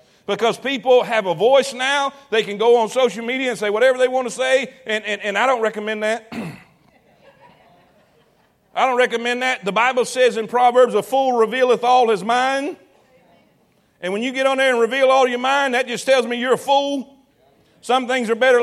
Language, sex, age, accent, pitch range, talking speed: English, male, 50-69, American, 220-265 Hz, 205 wpm